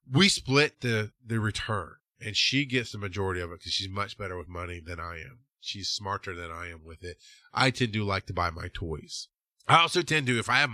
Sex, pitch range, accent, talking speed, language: male, 95-125 Hz, American, 240 wpm, English